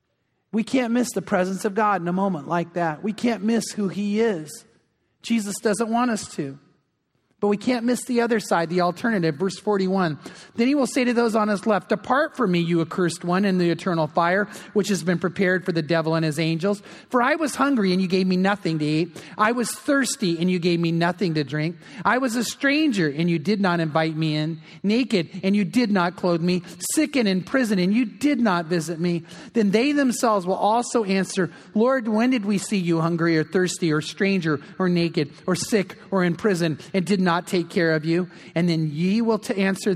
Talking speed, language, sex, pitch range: 225 wpm, English, male, 170-220 Hz